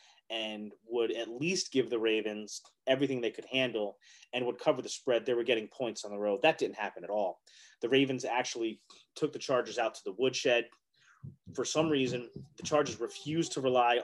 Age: 30-49